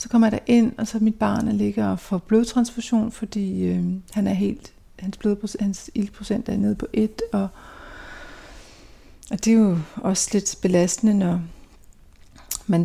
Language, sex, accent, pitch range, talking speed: Danish, female, native, 180-220 Hz, 170 wpm